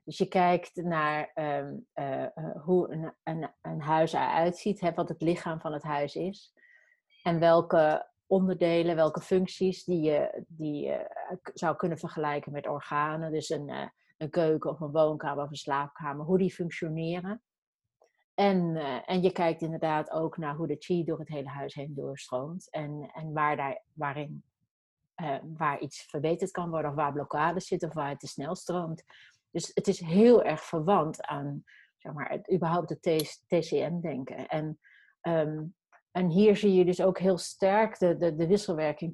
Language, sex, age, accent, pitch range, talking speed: Dutch, female, 30-49, Dutch, 155-185 Hz, 165 wpm